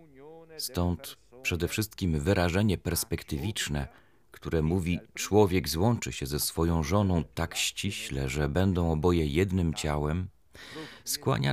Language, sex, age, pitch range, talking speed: Polish, male, 40-59, 80-115 Hz, 110 wpm